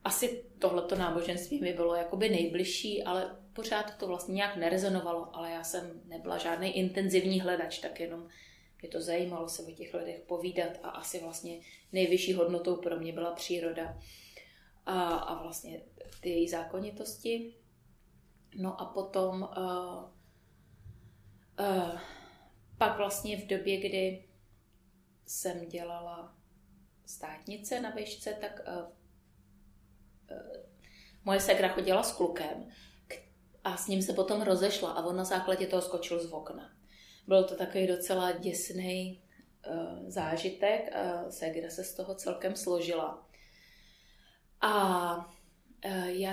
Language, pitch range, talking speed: Czech, 170-210 Hz, 125 wpm